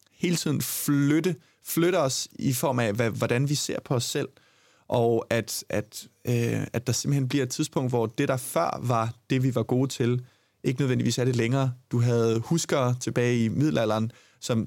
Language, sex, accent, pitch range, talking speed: Danish, male, native, 115-135 Hz, 190 wpm